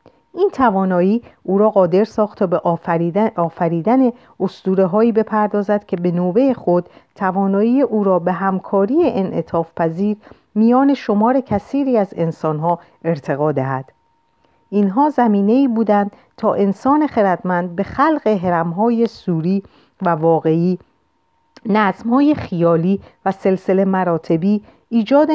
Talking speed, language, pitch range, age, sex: 125 wpm, Persian, 175-220 Hz, 40-59, female